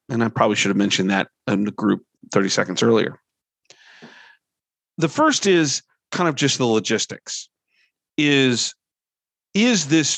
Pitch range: 105-145 Hz